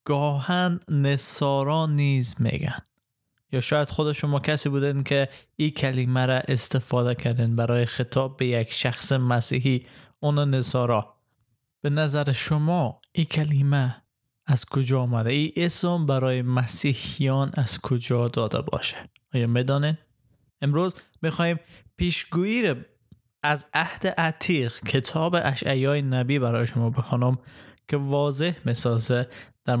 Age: 20-39